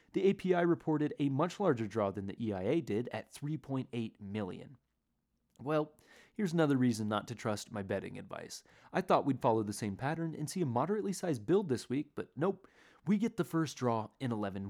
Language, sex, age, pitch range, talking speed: English, male, 30-49, 110-165 Hz, 195 wpm